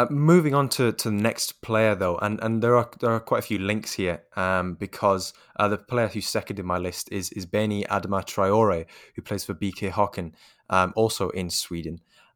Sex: male